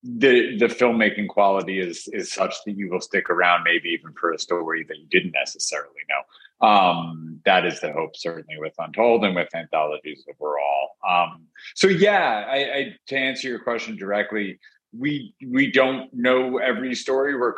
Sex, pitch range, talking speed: male, 90-120 Hz, 175 wpm